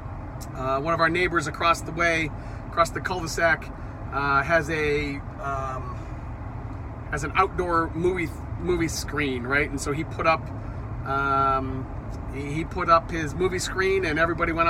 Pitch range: 115-170 Hz